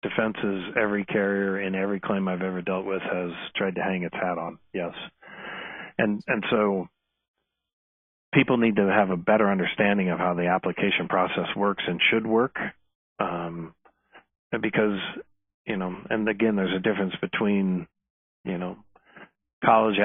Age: 40-59